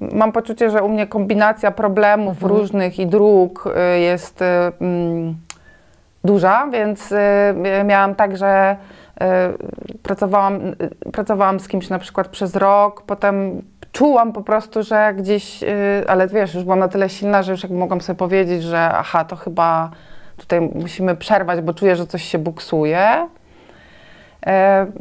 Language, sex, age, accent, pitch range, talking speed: Polish, female, 30-49, native, 170-205 Hz, 145 wpm